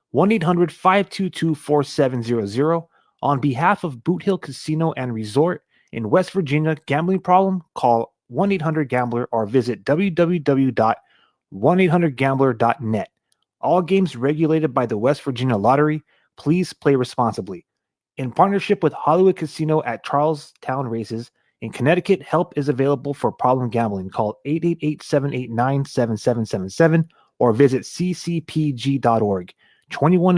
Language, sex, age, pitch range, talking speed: English, male, 30-49, 125-170 Hz, 105 wpm